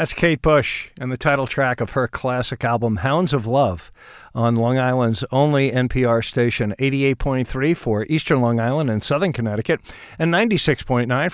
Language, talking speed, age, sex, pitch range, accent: English, 160 wpm, 50-69, male, 120-160 Hz, American